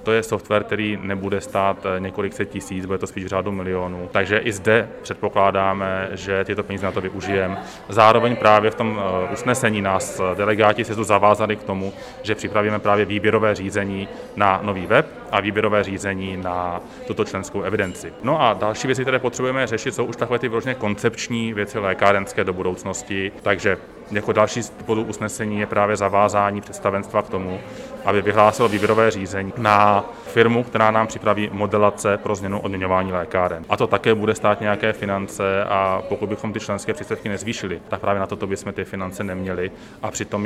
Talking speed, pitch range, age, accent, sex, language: 170 wpm, 95-110 Hz, 30-49, native, male, Czech